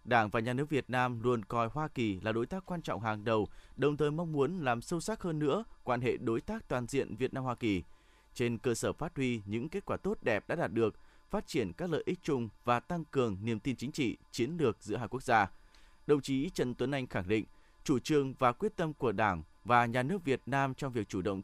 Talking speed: 250 wpm